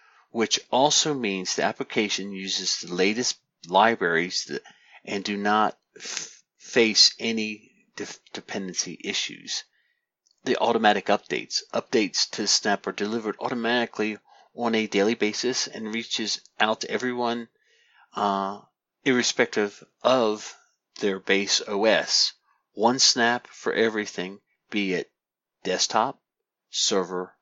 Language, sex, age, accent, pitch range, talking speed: English, male, 40-59, American, 100-120 Hz, 105 wpm